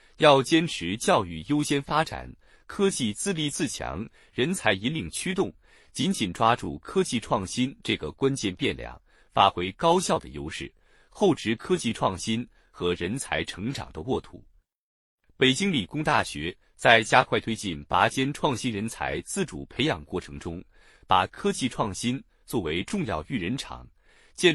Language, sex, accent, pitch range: Chinese, male, native, 95-150 Hz